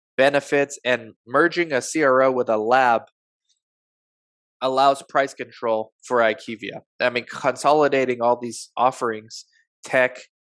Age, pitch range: 20-39, 120-135 Hz